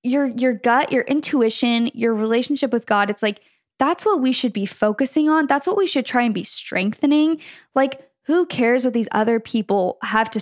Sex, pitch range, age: female, 215-255 Hz, 10-29